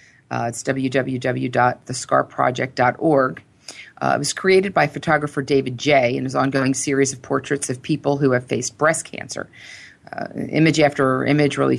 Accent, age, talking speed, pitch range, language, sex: American, 40-59, 150 wpm, 125-145 Hz, English, female